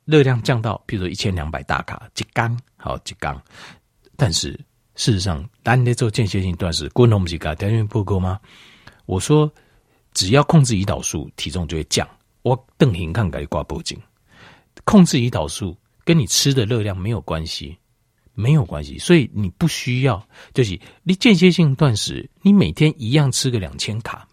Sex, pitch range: male, 95-150 Hz